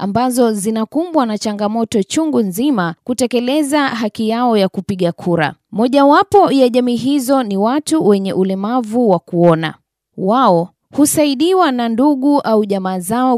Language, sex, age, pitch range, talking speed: Swahili, female, 20-39, 195-270 Hz, 135 wpm